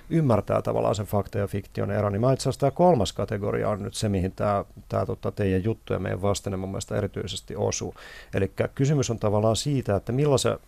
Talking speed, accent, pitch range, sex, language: 185 wpm, native, 95-115 Hz, male, Finnish